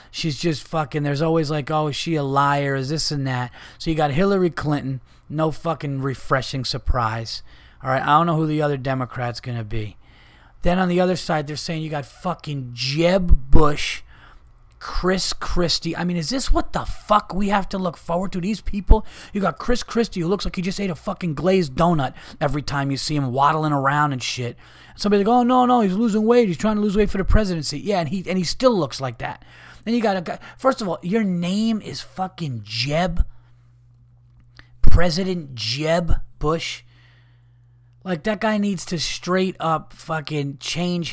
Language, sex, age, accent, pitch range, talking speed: English, male, 30-49, American, 125-180 Hz, 195 wpm